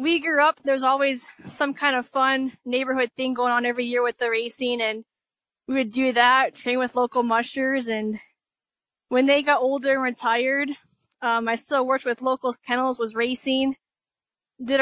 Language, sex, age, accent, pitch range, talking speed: English, female, 10-29, American, 235-265 Hz, 180 wpm